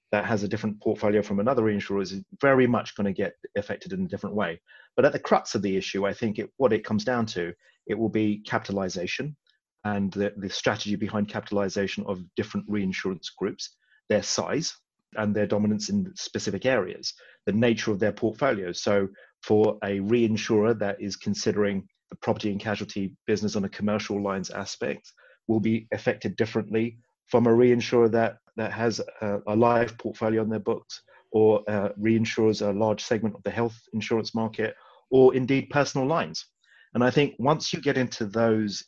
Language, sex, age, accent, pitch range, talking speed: English, male, 30-49, British, 100-120 Hz, 180 wpm